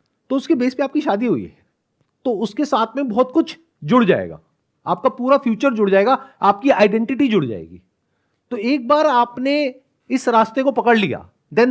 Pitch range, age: 150-240 Hz, 40-59